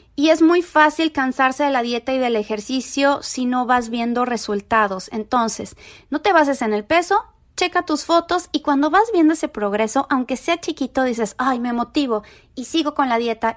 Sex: female